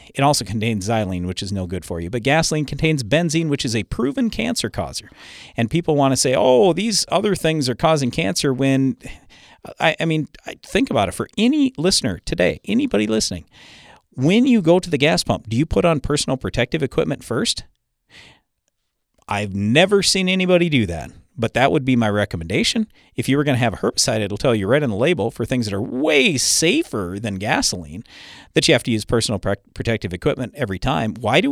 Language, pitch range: English, 105-150 Hz